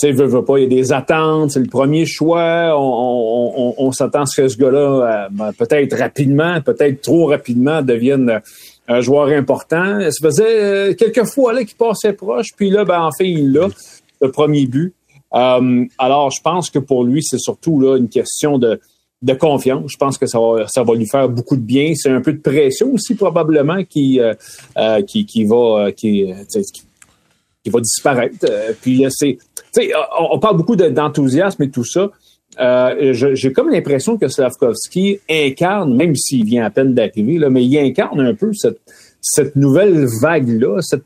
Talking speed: 180 wpm